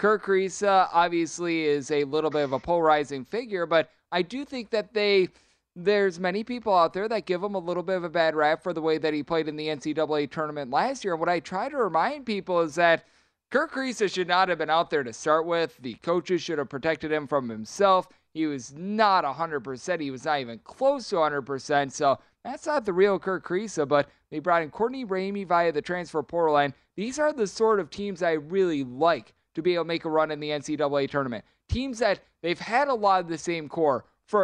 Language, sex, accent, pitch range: English, male, American, 155-195 Hz